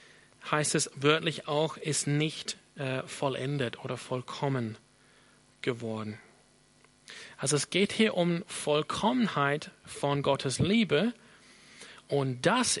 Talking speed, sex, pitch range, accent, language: 105 wpm, male, 130-160 Hz, German, German